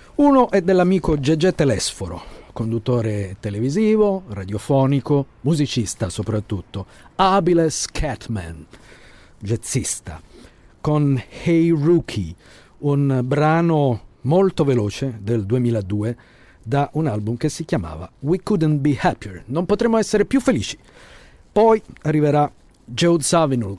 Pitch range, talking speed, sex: 110-150 Hz, 105 wpm, male